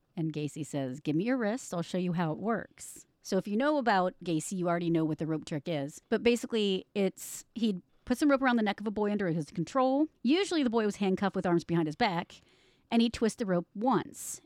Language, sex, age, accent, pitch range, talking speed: English, female, 30-49, American, 180-235 Hz, 245 wpm